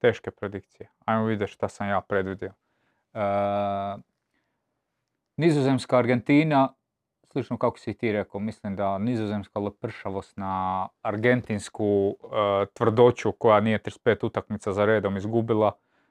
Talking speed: 115 wpm